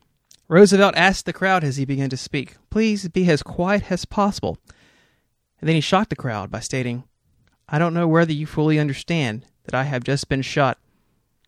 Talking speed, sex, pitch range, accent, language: 190 wpm, male, 130-170 Hz, American, English